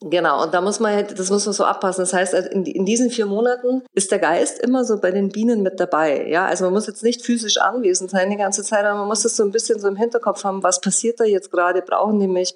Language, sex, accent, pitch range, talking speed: German, female, German, 180-220 Hz, 270 wpm